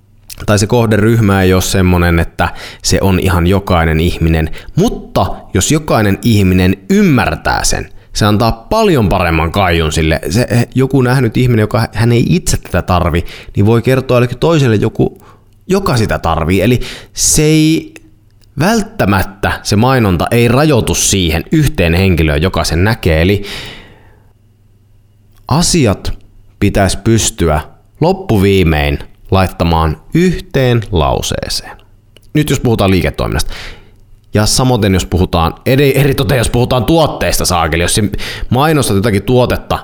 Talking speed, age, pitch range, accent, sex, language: 125 wpm, 30-49, 90-120 Hz, native, male, Finnish